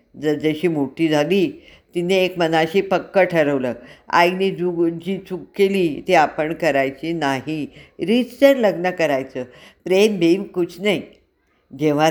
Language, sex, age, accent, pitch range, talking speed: Marathi, female, 50-69, native, 150-195 Hz, 125 wpm